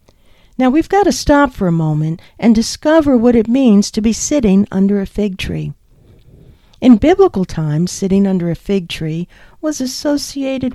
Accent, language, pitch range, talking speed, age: American, English, 175-255 Hz, 165 wpm, 60-79